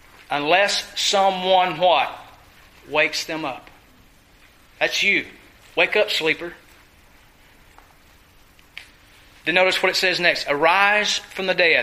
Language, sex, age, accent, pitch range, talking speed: English, male, 40-59, American, 175-225 Hz, 105 wpm